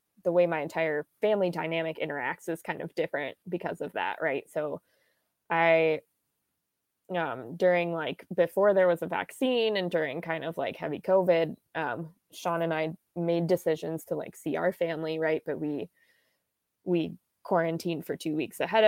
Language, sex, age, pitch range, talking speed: English, female, 20-39, 160-180 Hz, 165 wpm